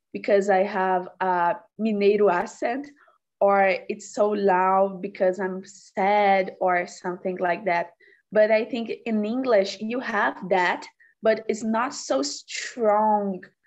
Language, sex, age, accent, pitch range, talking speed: Portuguese, female, 20-39, Brazilian, 185-210 Hz, 130 wpm